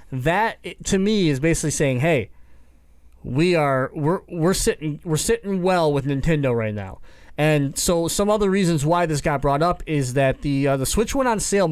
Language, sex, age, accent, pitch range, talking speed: English, male, 30-49, American, 140-190 Hz, 195 wpm